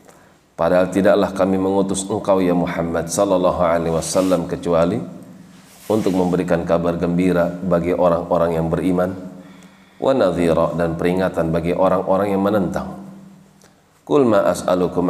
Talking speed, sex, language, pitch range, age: 105 wpm, male, Indonesian, 85-100 Hz, 40-59